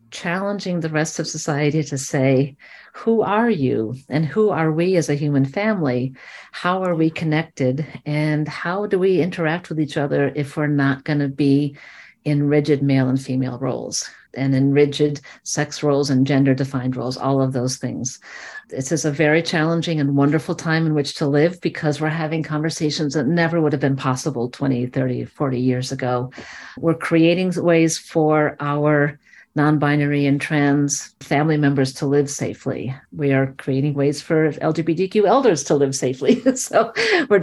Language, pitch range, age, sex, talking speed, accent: English, 140-165 Hz, 50-69, female, 170 wpm, American